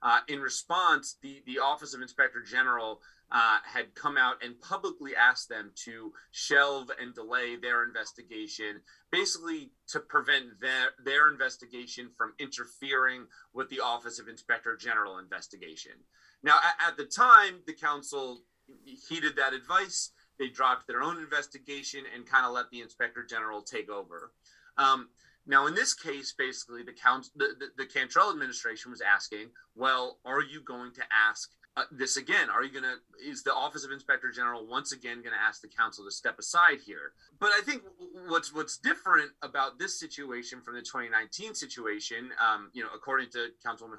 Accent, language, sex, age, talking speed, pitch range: American, English, male, 30-49, 170 wpm, 125-175 Hz